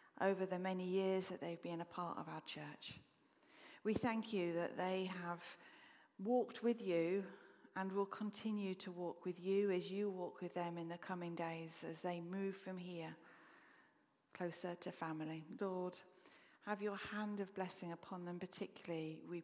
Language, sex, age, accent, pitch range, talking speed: English, female, 40-59, British, 175-205 Hz, 170 wpm